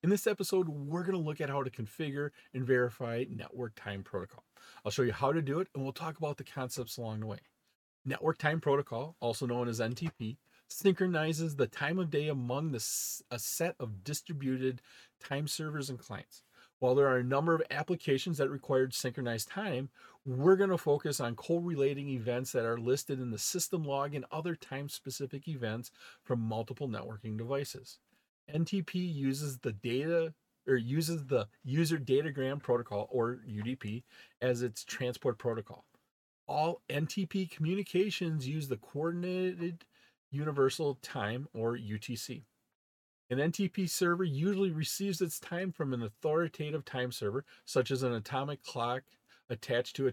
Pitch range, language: 125-160 Hz, English